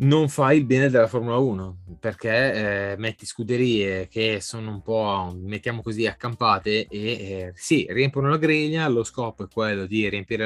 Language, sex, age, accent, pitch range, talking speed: Italian, male, 20-39, native, 100-120 Hz, 180 wpm